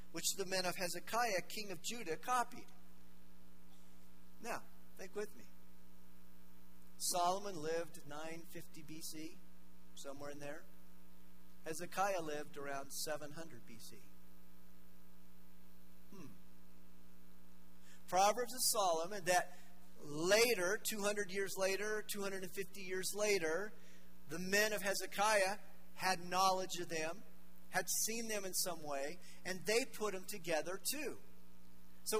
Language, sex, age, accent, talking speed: English, male, 40-59, American, 110 wpm